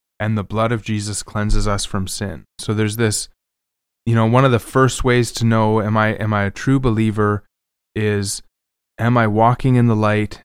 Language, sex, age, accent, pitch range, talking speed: English, male, 20-39, American, 100-120 Hz, 200 wpm